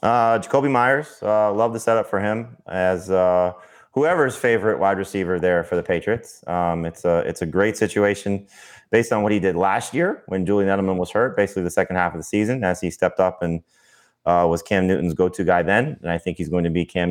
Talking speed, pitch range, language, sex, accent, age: 230 wpm, 90-115 Hz, English, male, American, 20-39